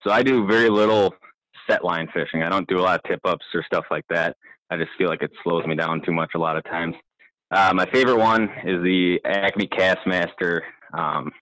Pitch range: 85-95 Hz